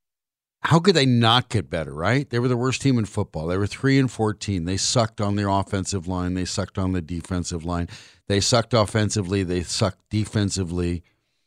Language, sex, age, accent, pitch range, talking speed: English, male, 50-69, American, 100-130 Hz, 195 wpm